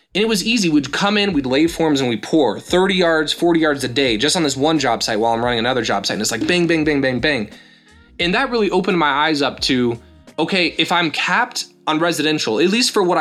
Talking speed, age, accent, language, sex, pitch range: 260 wpm, 20-39, American, English, male, 130-165 Hz